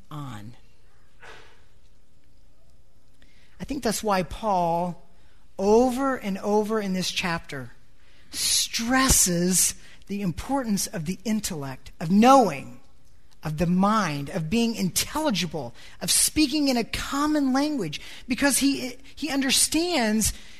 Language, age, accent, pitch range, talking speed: English, 40-59, American, 190-280 Hz, 105 wpm